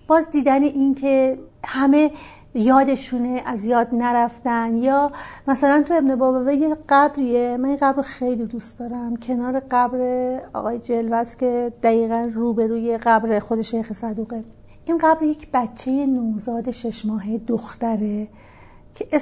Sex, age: female, 40-59